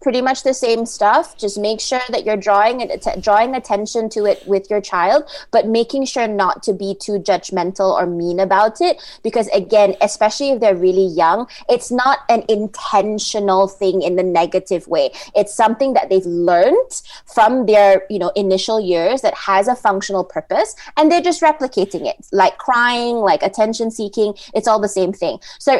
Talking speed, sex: 185 wpm, female